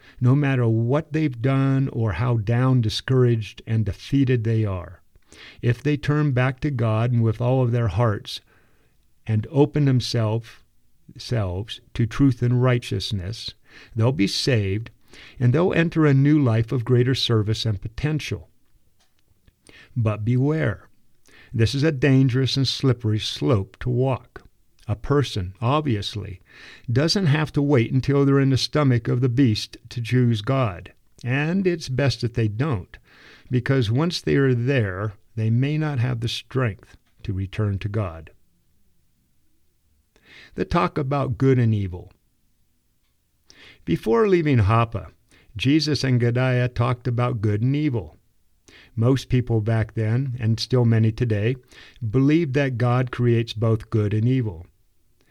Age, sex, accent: 50-69, male, American